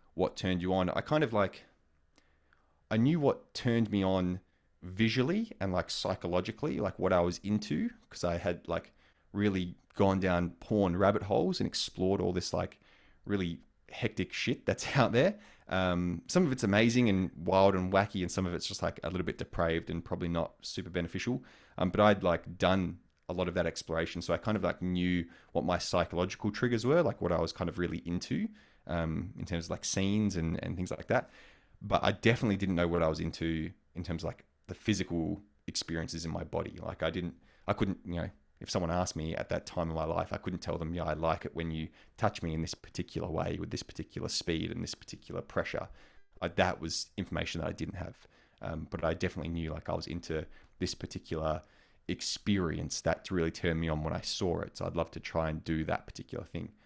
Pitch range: 85-100 Hz